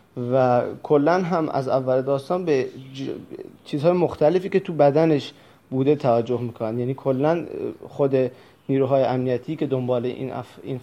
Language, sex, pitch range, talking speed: Persian, male, 130-160 Hz, 135 wpm